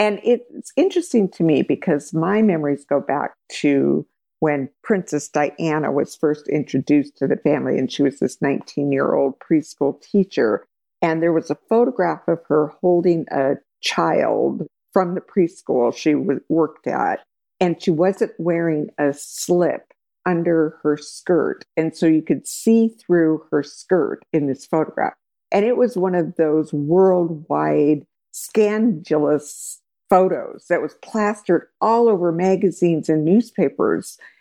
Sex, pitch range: female, 150-190 Hz